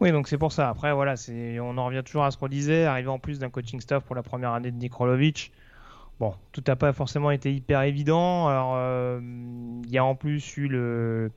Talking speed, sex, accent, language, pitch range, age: 240 wpm, male, French, French, 120-140 Hz, 20-39